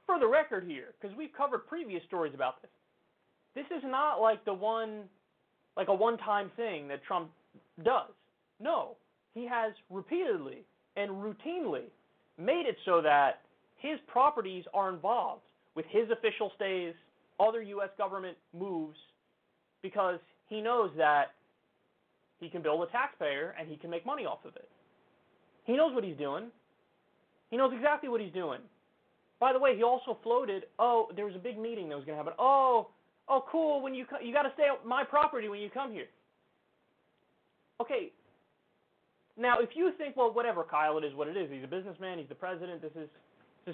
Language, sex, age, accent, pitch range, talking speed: English, male, 30-49, American, 180-270 Hz, 175 wpm